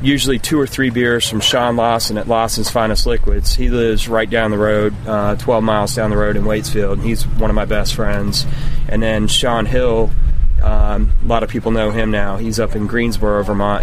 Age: 30-49